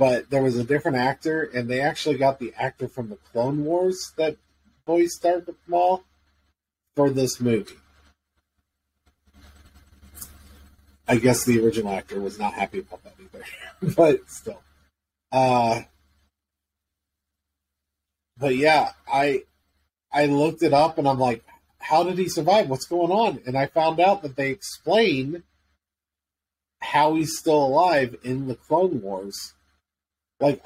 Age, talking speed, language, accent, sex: 30-49, 135 wpm, English, American, male